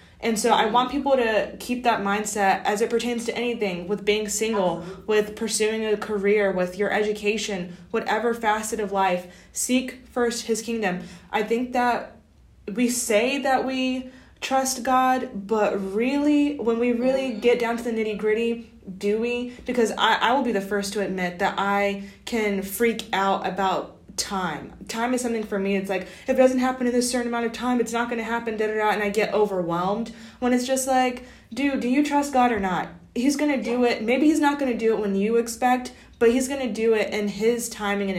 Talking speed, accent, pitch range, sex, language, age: 210 wpm, American, 195-240 Hz, female, English, 20-39